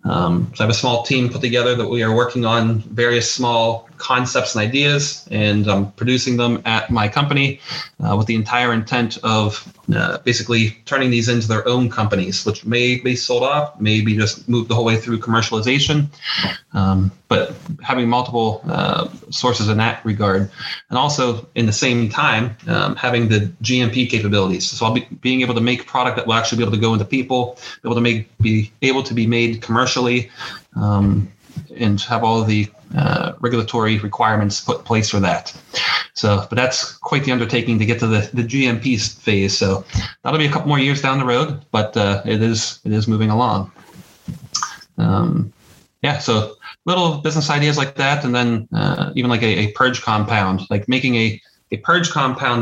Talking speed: 190 wpm